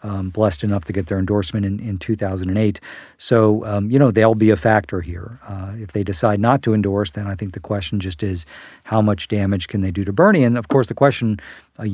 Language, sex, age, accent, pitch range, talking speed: English, male, 50-69, American, 95-110 Hz, 235 wpm